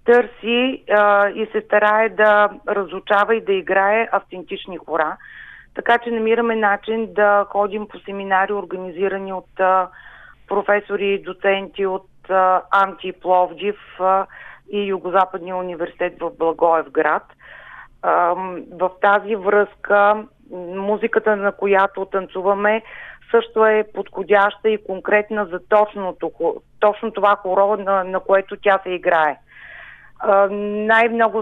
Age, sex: 30-49, female